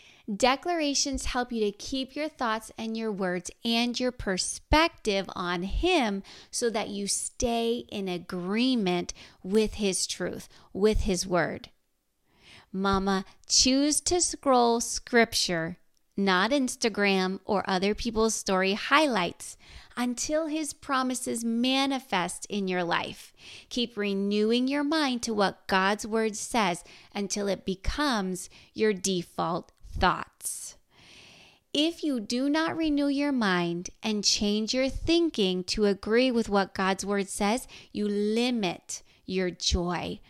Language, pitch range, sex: English, 190-250 Hz, female